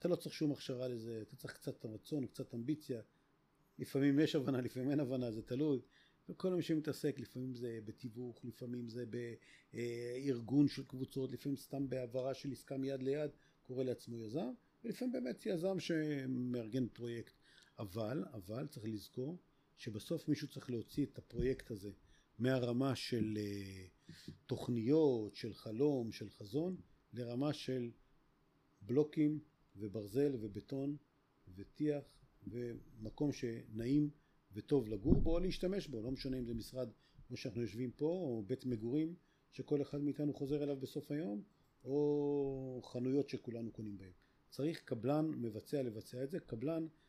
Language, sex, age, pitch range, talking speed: Hebrew, male, 50-69, 115-145 Hz, 140 wpm